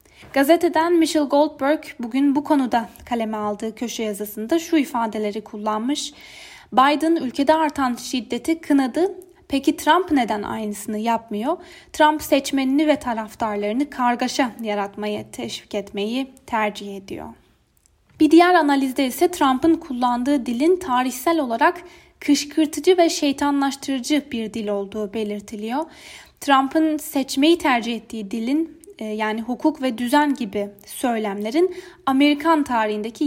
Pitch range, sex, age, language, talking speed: 230-310 Hz, female, 10-29, Turkish, 110 wpm